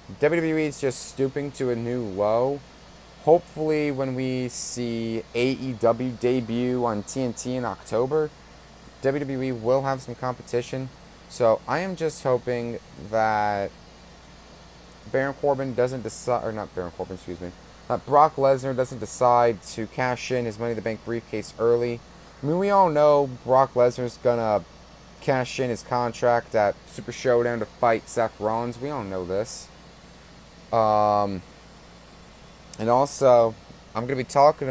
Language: English